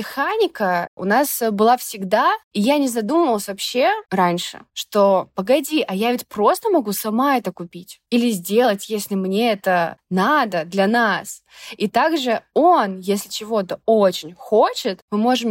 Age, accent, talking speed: 20-39, native, 145 wpm